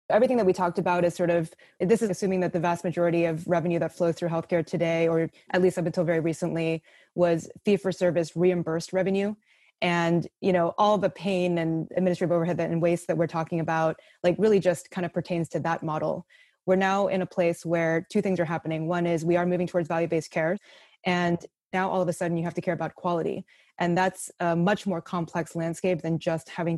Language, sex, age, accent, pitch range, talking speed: English, female, 20-39, American, 165-185 Hz, 215 wpm